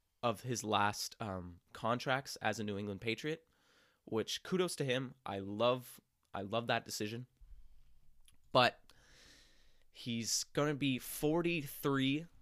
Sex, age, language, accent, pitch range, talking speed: male, 20-39, English, American, 100-125 Hz, 125 wpm